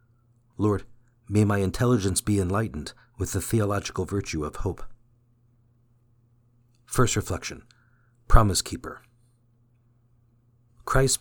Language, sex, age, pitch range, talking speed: English, male, 50-69, 100-120 Hz, 90 wpm